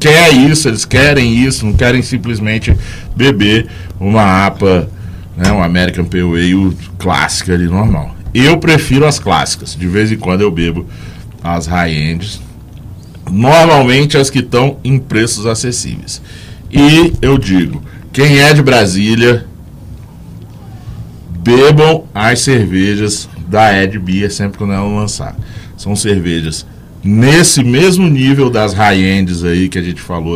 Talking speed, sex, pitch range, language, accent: 135 wpm, male, 90-130 Hz, Portuguese, Brazilian